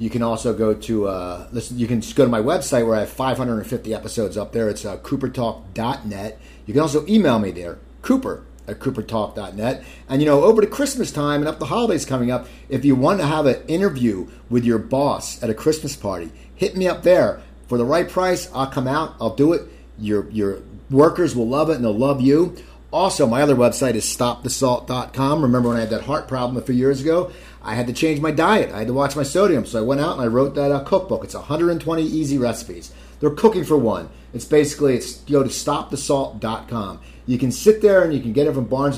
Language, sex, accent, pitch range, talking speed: English, male, American, 115-145 Hz, 230 wpm